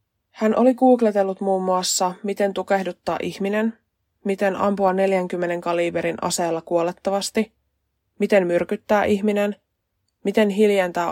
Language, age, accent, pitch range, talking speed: Finnish, 20-39, native, 170-200 Hz, 105 wpm